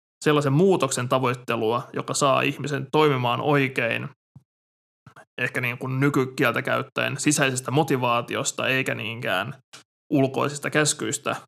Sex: male